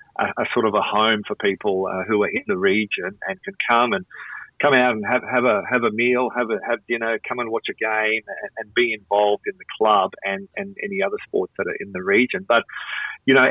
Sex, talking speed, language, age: male, 250 wpm, English, 40-59